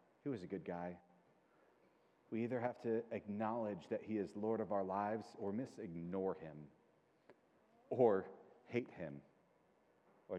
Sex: male